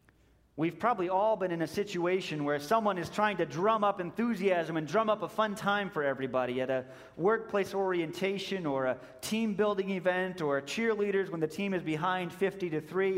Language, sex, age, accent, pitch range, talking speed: English, male, 30-49, American, 150-215 Hz, 190 wpm